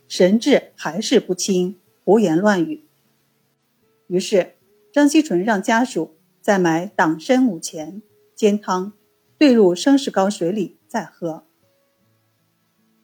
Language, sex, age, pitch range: Chinese, female, 50-69, 170-245 Hz